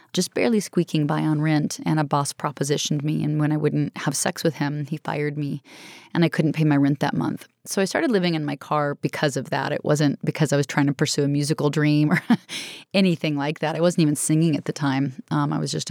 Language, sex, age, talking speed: English, female, 20-39, 250 wpm